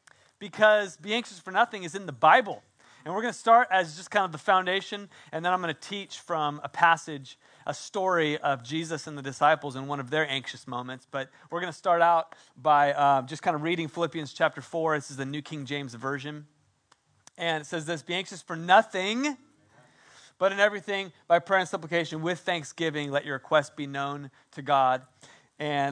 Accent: American